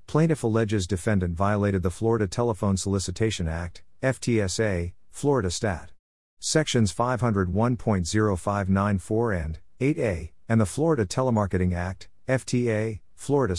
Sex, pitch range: male, 90-115 Hz